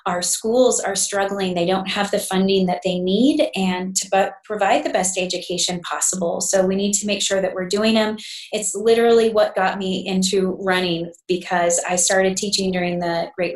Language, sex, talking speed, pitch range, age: English, female, 195 wpm, 180-200 Hz, 30-49